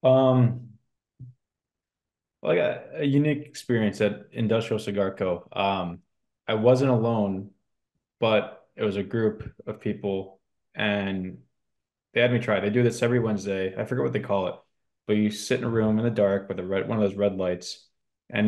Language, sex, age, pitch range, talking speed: English, male, 20-39, 95-115 Hz, 180 wpm